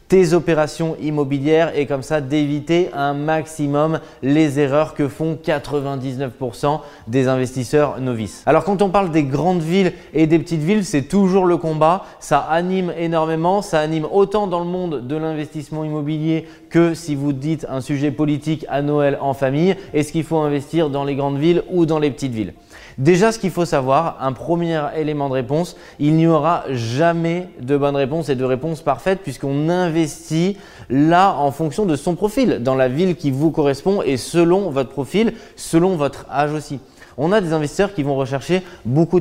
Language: French